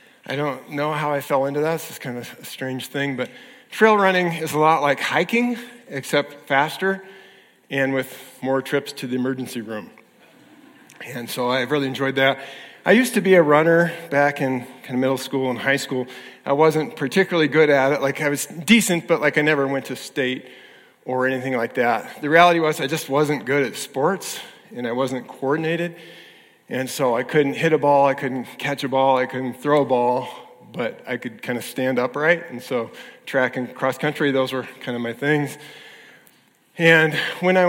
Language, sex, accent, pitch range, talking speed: English, male, American, 130-160 Hz, 200 wpm